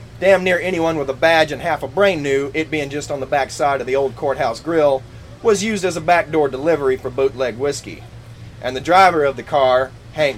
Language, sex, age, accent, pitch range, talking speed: English, male, 30-49, American, 120-155 Hz, 225 wpm